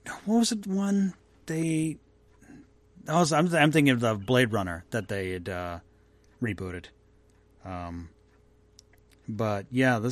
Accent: American